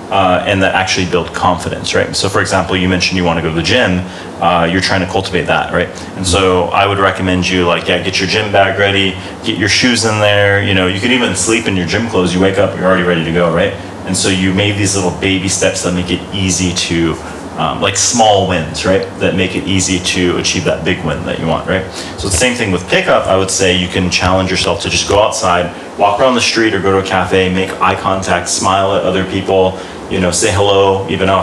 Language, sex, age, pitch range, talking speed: English, male, 30-49, 90-95 Hz, 255 wpm